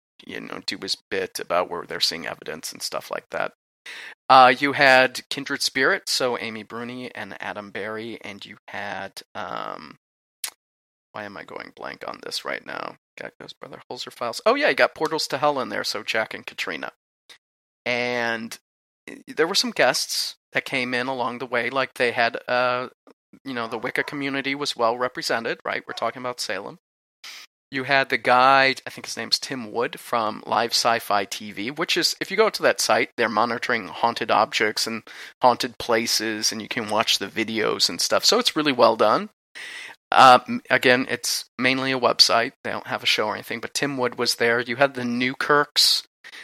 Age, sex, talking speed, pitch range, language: 30-49, male, 190 wpm, 115-135 Hz, English